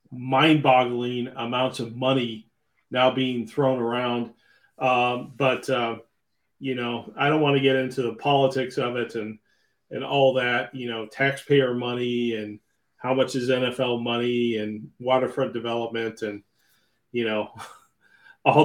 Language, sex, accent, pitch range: English, male, American, 120-145 Hz